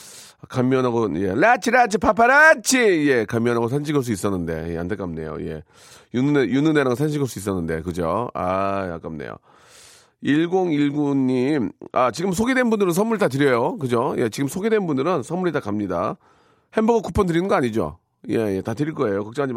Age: 40-59